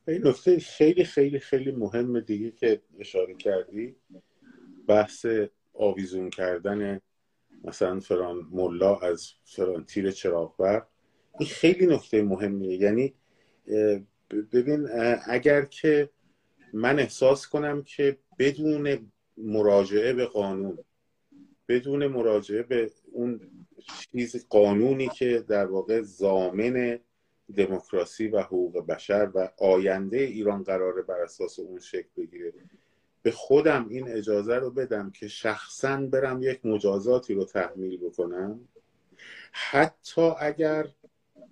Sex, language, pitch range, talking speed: male, Persian, 105-145 Hz, 110 wpm